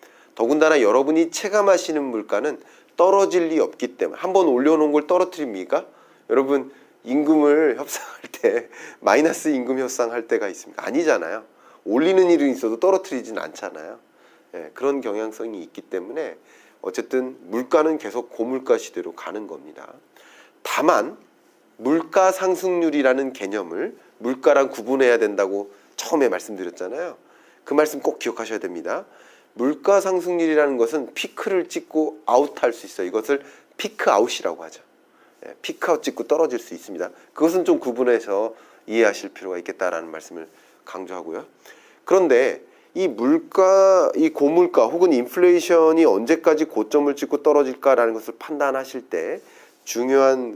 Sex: male